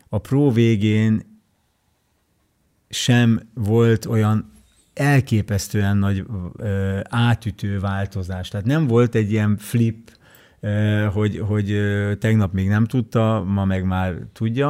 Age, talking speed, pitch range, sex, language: 50-69, 105 wpm, 100-120 Hz, male, Hungarian